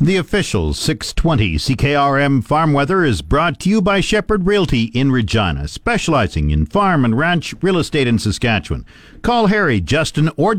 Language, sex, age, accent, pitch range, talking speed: English, male, 50-69, American, 120-155 Hz, 160 wpm